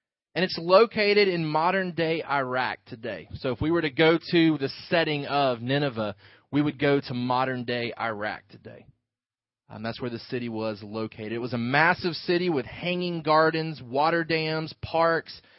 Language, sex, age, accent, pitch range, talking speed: English, male, 30-49, American, 130-165 Hz, 165 wpm